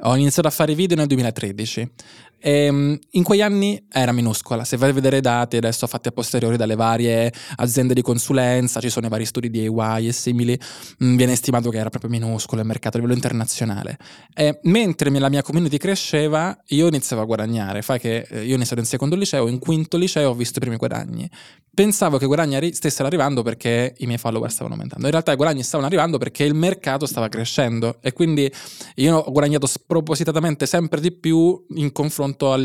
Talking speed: 200 wpm